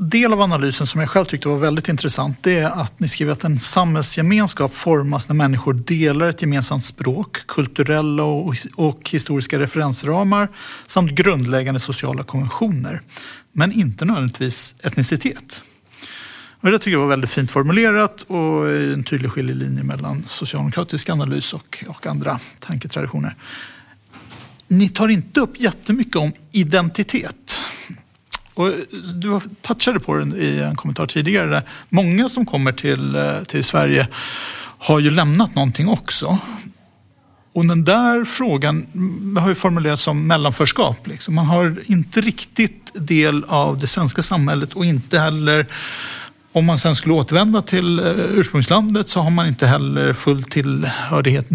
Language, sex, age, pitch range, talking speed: Swedish, male, 60-79, 140-190 Hz, 135 wpm